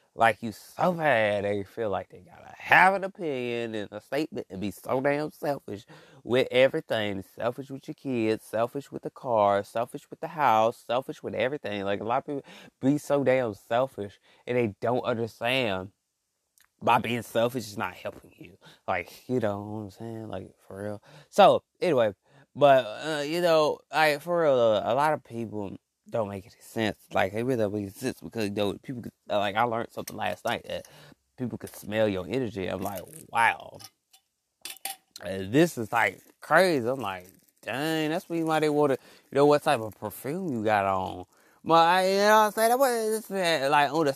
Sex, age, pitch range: male, 20-39, 105-155 Hz